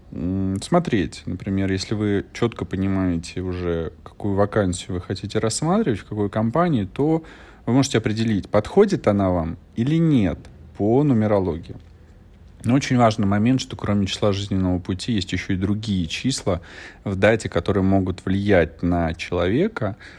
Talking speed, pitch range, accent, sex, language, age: 140 wpm, 90-110 Hz, native, male, Russian, 30-49